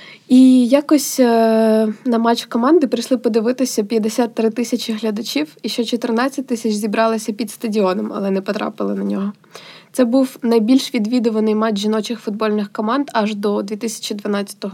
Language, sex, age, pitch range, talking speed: Ukrainian, female, 20-39, 215-250 Hz, 135 wpm